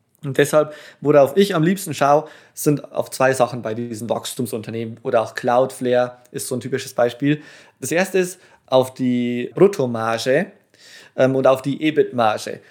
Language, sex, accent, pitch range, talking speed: German, male, German, 130-175 Hz, 150 wpm